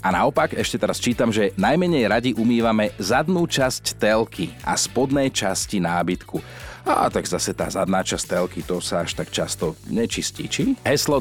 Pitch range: 100-145 Hz